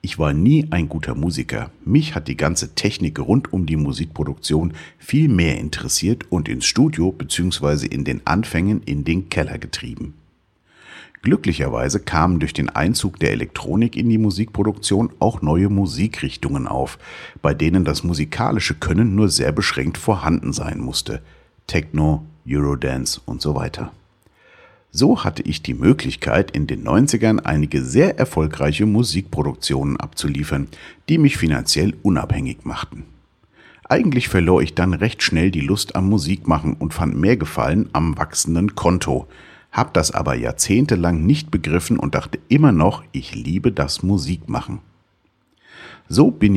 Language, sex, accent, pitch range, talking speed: German, male, German, 75-105 Hz, 140 wpm